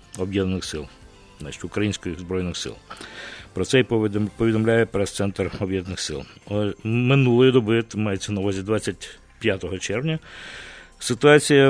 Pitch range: 105-125 Hz